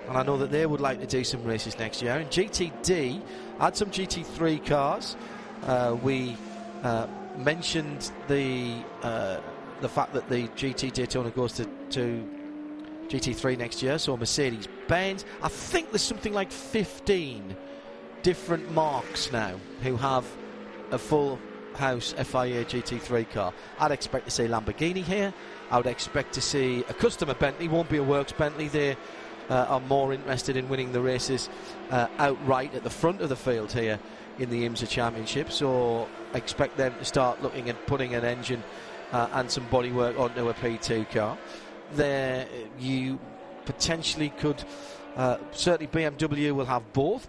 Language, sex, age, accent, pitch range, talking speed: English, male, 40-59, British, 120-145 Hz, 155 wpm